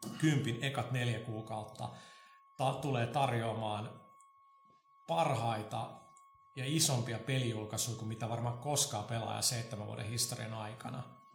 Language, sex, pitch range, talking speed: Finnish, male, 110-135 Hz, 105 wpm